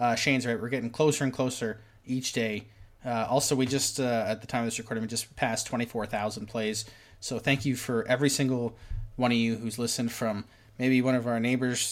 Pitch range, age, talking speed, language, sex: 110-130 Hz, 20-39, 215 wpm, English, male